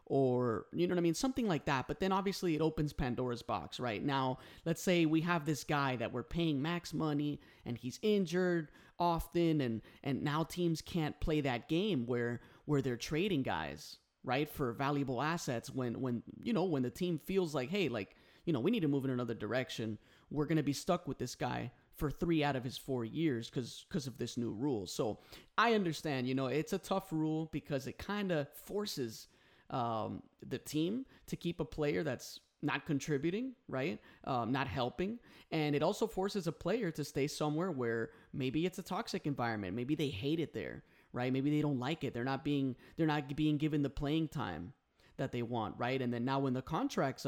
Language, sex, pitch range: English, male, 130-165 Hz